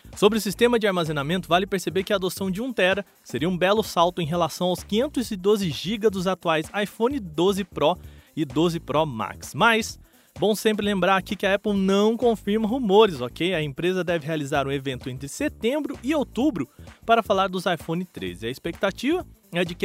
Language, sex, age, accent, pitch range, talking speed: Portuguese, male, 20-39, Brazilian, 165-220 Hz, 185 wpm